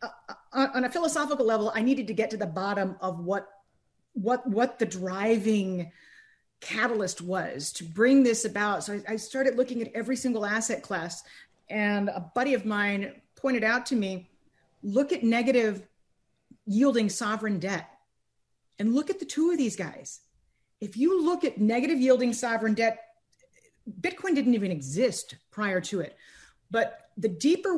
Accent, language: American, English